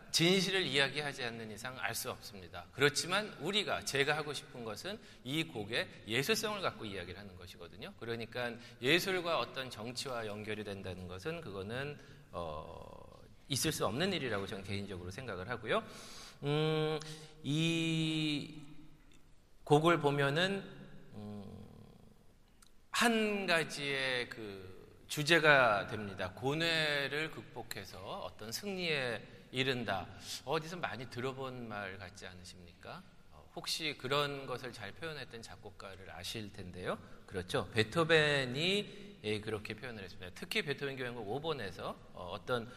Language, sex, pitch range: Korean, male, 105-155 Hz